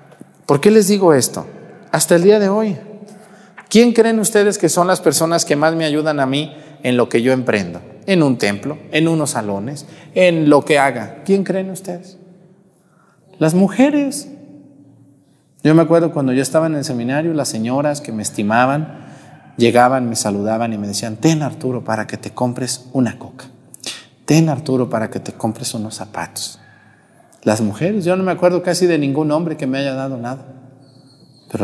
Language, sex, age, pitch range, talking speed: Spanish, male, 40-59, 120-165 Hz, 180 wpm